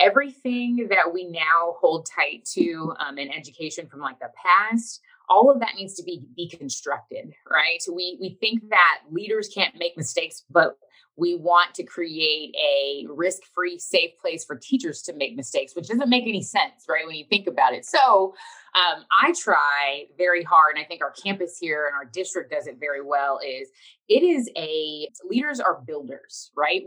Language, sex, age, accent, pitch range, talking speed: English, female, 20-39, American, 170-250 Hz, 185 wpm